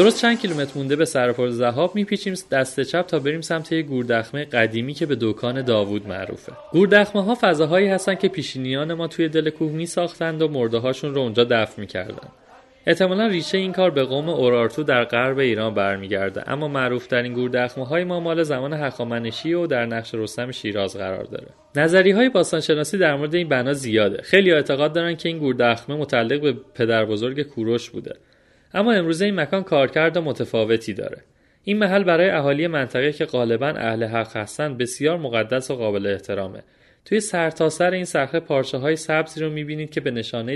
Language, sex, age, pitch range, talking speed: Persian, male, 30-49, 120-170 Hz, 180 wpm